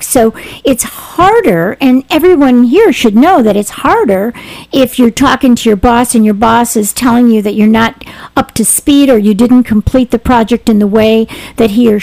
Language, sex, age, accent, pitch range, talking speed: English, female, 50-69, American, 215-265 Hz, 205 wpm